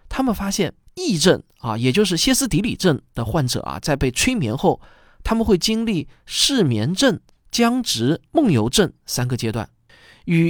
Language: Chinese